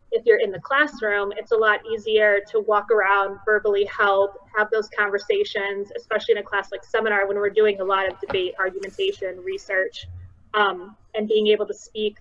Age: 20-39